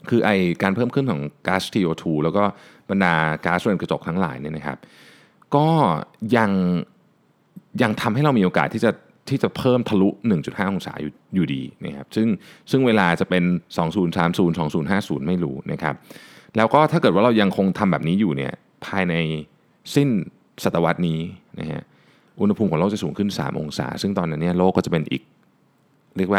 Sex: male